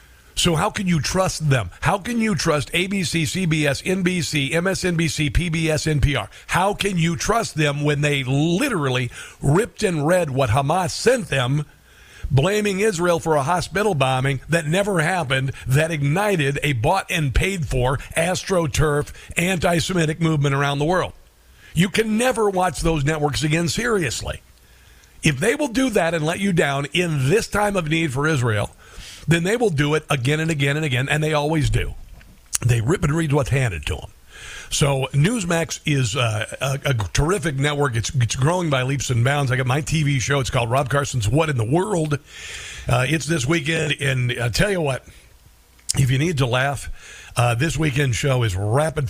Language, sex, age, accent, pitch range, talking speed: English, male, 50-69, American, 130-170 Hz, 175 wpm